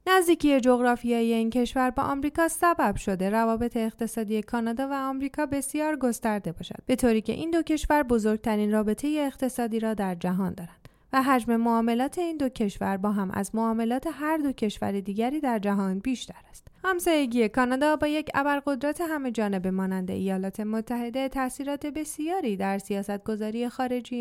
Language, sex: Persian, female